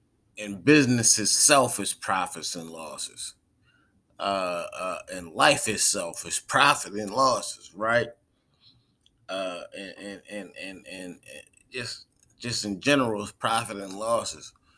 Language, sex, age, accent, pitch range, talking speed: English, male, 30-49, American, 100-130 Hz, 135 wpm